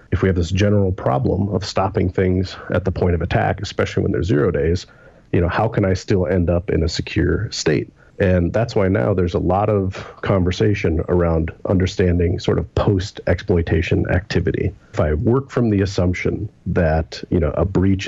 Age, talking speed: 40-59, 190 wpm